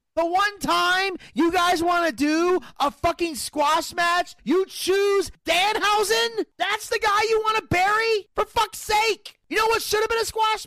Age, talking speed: 30-49, 185 wpm